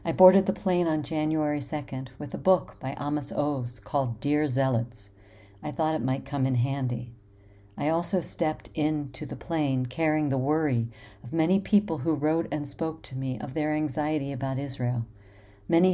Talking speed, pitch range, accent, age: 175 wpm, 125-155 Hz, American, 50-69